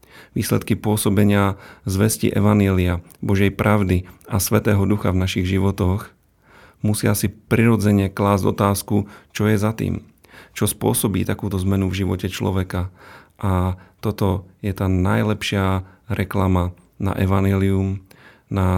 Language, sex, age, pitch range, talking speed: Slovak, male, 40-59, 95-105 Hz, 120 wpm